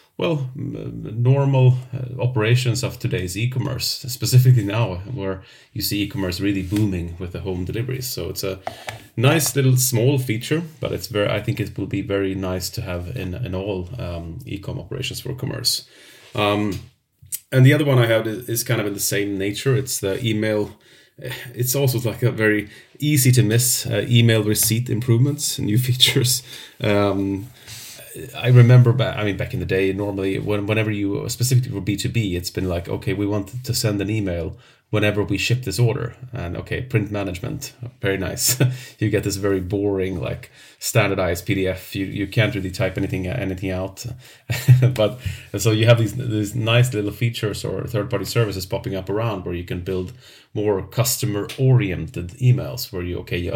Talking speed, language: 175 wpm, English